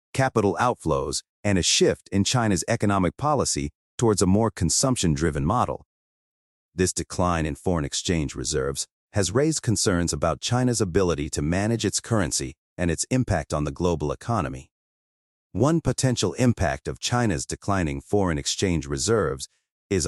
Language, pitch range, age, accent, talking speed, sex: English, 80-110 Hz, 40-59, American, 145 wpm, male